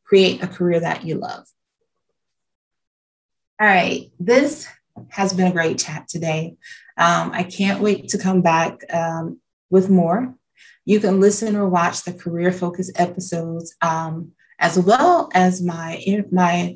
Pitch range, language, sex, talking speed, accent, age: 175-205 Hz, English, female, 145 wpm, American, 30-49